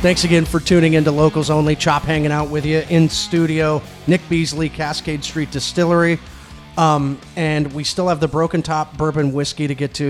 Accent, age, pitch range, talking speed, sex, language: American, 40-59, 130-160 Hz, 195 wpm, male, English